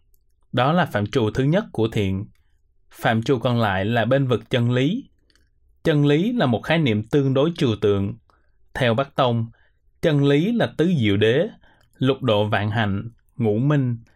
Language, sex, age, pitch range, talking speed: Vietnamese, male, 20-39, 110-140 Hz, 180 wpm